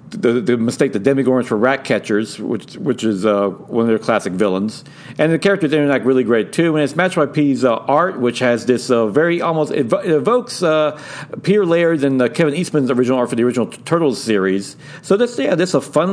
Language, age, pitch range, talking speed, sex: English, 50-69, 125-165 Hz, 235 wpm, male